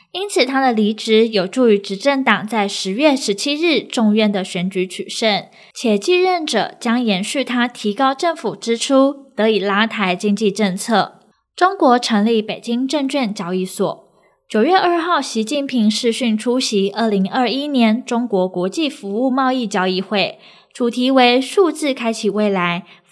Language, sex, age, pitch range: Chinese, female, 10-29, 205-270 Hz